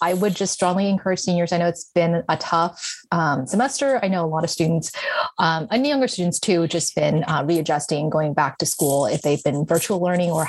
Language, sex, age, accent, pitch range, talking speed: English, female, 30-49, American, 155-190 Hz, 225 wpm